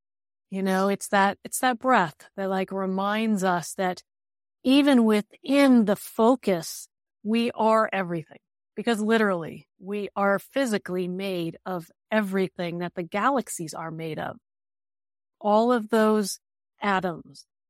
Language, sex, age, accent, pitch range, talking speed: English, female, 30-49, American, 180-230 Hz, 125 wpm